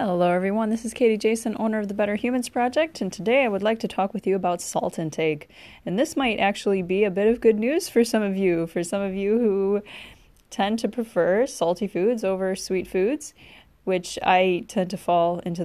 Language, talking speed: English, 220 wpm